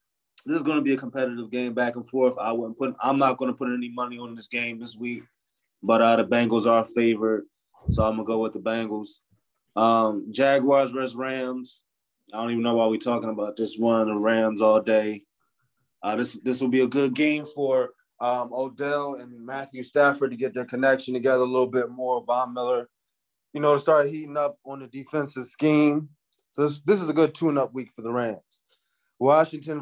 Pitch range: 120-145 Hz